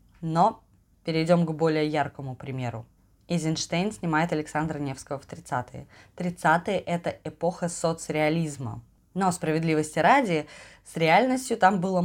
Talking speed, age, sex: 115 wpm, 20-39, female